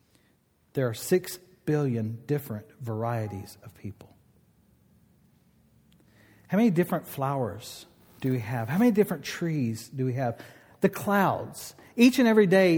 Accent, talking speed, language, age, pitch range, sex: American, 130 wpm, English, 40-59, 130-195 Hz, male